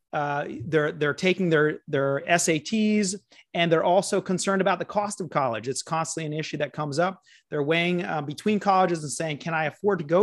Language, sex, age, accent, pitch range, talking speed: English, male, 30-49, American, 165-200 Hz, 205 wpm